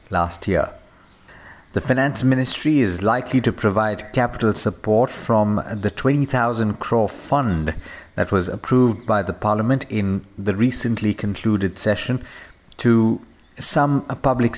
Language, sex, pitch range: English, male, 100-125 Hz